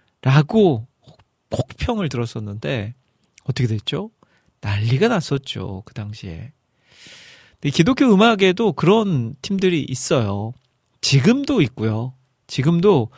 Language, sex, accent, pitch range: Korean, male, native, 120-160 Hz